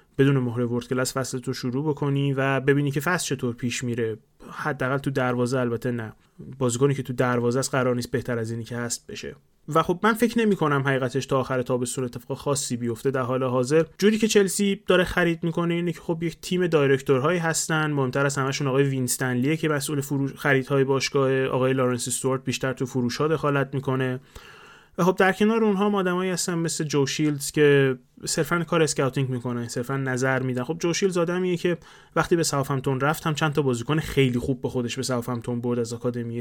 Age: 30-49